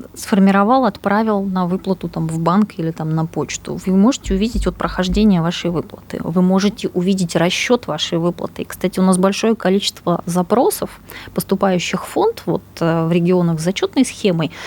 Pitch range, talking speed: 165-205 Hz, 165 wpm